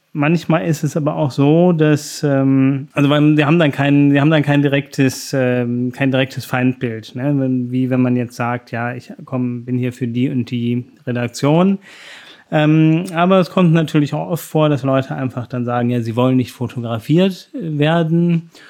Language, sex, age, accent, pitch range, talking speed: German, male, 30-49, German, 125-155 Hz, 165 wpm